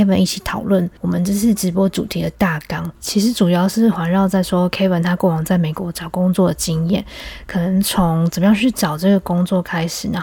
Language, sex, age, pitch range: Chinese, female, 20-39, 175-215 Hz